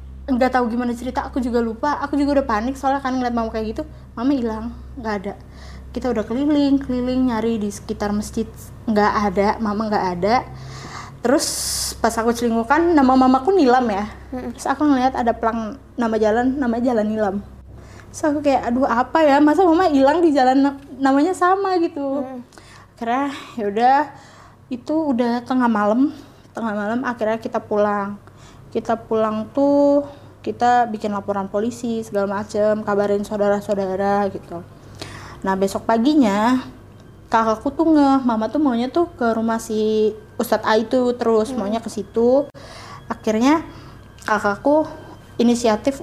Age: 20-39